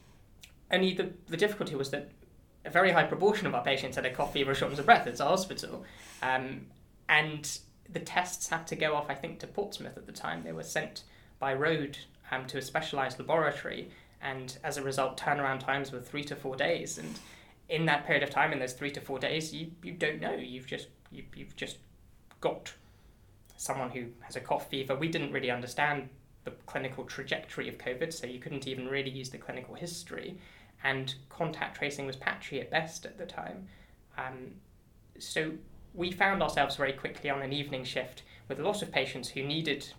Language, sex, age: English, male, 20-39